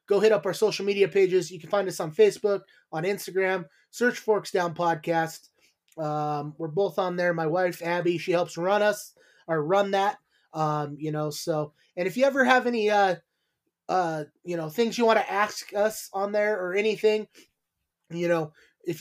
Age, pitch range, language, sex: 20-39, 165-205 Hz, English, male